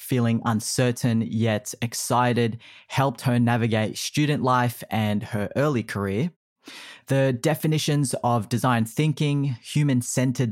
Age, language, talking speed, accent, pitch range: 20-39, English, 110 wpm, Australian, 110-130 Hz